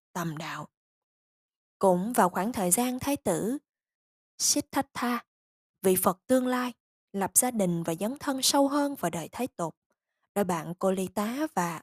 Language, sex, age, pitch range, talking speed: Vietnamese, female, 20-39, 185-255 Hz, 160 wpm